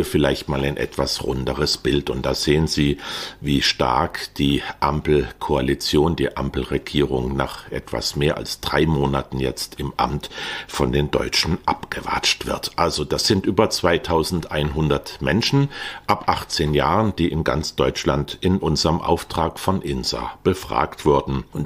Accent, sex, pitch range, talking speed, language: German, male, 70-85 Hz, 140 wpm, German